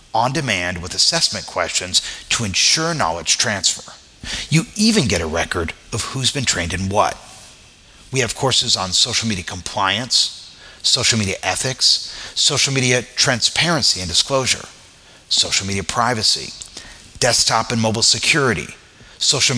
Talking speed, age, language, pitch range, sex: 130 wpm, 40-59, English, 95-130 Hz, male